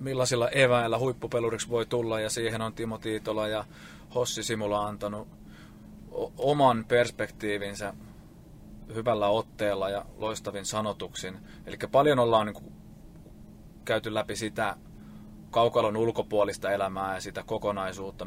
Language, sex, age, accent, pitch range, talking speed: Finnish, male, 30-49, native, 100-115 Hz, 110 wpm